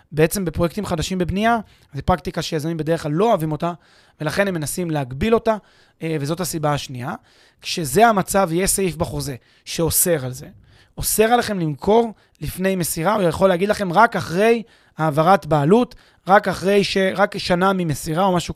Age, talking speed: 20-39, 160 wpm